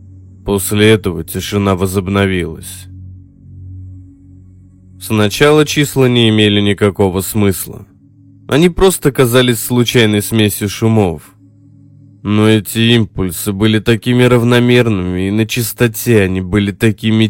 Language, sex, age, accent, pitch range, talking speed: Russian, male, 20-39, native, 95-115 Hz, 95 wpm